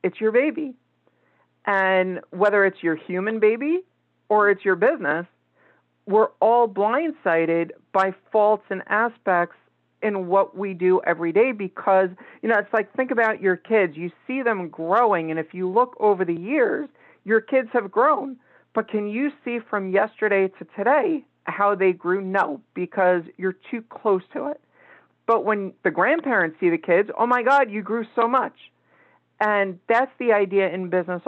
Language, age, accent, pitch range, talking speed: English, 40-59, American, 185-235 Hz, 170 wpm